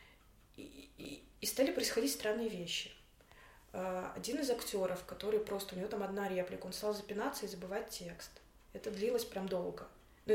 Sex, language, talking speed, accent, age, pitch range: female, Russian, 160 wpm, native, 20-39, 190-245 Hz